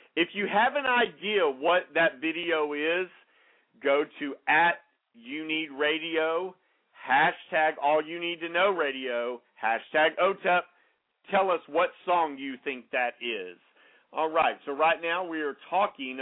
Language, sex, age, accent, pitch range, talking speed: English, male, 50-69, American, 145-200 Hz, 150 wpm